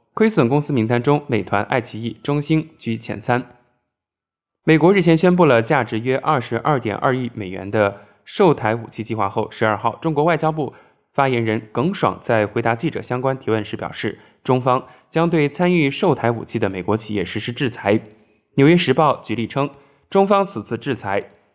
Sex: male